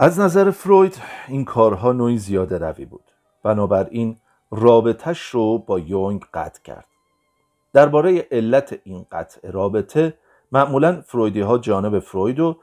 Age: 40-59